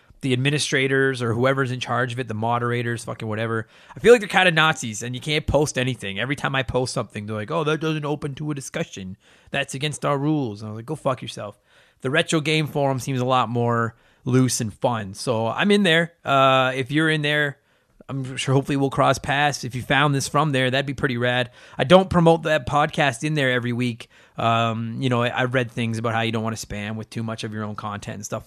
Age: 30-49